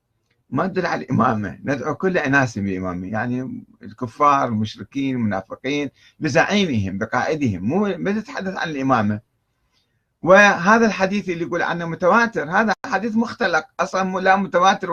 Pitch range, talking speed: 115-170 Hz, 125 wpm